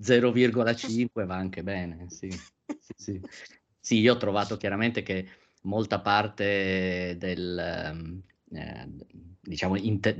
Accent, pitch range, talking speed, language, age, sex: native, 100-115 Hz, 110 wpm, Italian, 30-49, male